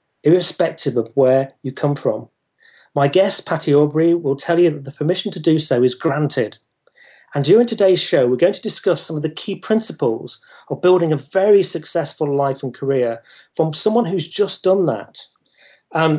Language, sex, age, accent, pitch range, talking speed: English, male, 40-59, British, 145-180 Hz, 180 wpm